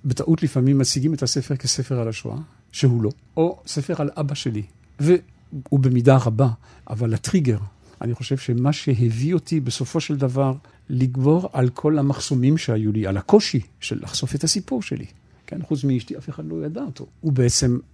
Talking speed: 170 wpm